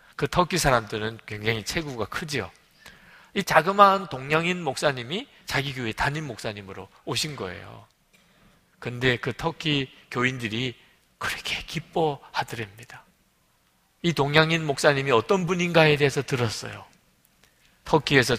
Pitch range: 125-200 Hz